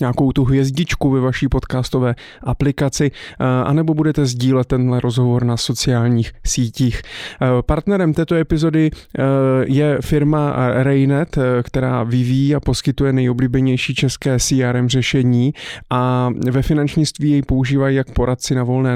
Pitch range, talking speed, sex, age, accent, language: 125-145 Hz, 120 wpm, male, 20-39, native, Czech